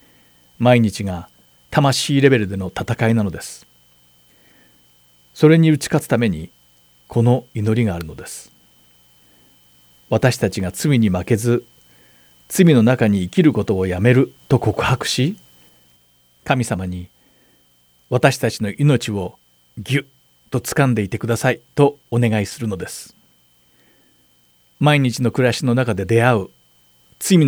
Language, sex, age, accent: Japanese, male, 50-69, native